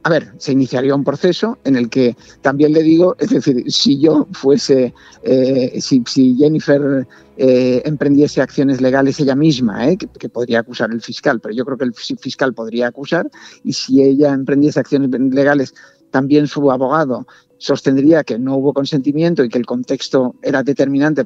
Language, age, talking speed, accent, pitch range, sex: Spanish, 50-69, 175 wpm, Spanish, 130-150 Hz, male